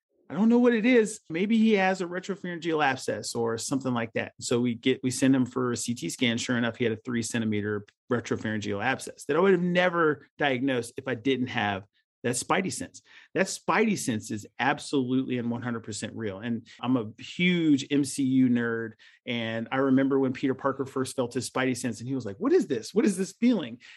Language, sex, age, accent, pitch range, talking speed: English, male, 40-59, American, 125-180 Hz, 210 wpm